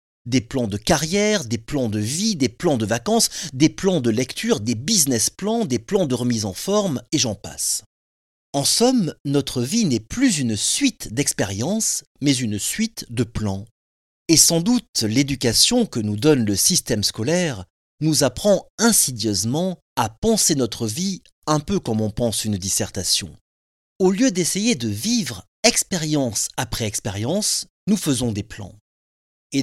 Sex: male